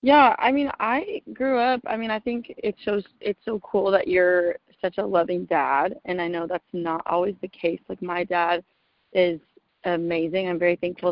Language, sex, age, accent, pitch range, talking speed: English, female, 20-39, American, 175-215 Hz, 200 wpm